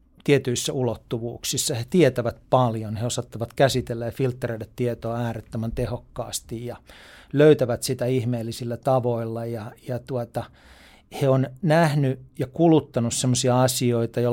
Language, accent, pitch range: Finnish, native, 120-145 Hz